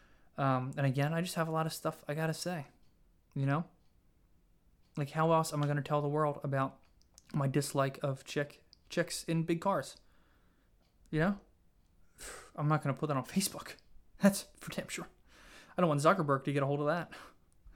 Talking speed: 190 wpm